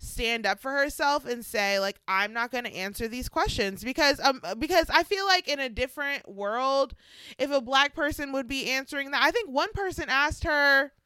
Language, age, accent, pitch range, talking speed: English, 20-39, American, 190-270 Hz, 205 wpm